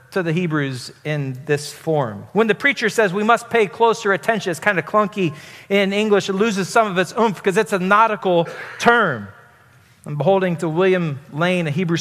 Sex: male